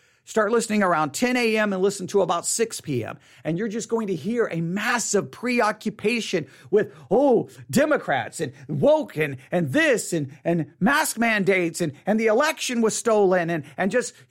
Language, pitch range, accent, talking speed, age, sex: English, 180-255 Hz, American, 170 wpm, 40-59, male